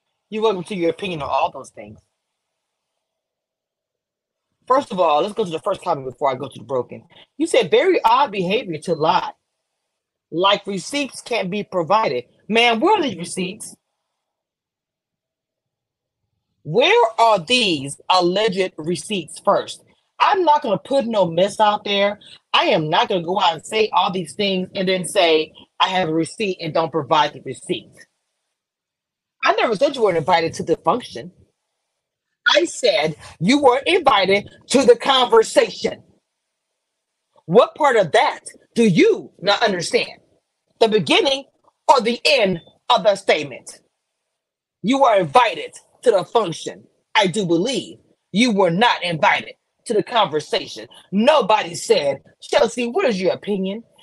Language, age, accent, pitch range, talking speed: English, 40-59, American, 180-250 Hz, 150 wpm